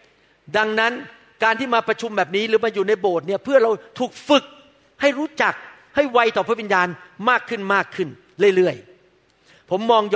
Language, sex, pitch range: Thai, male, 200-255 Hz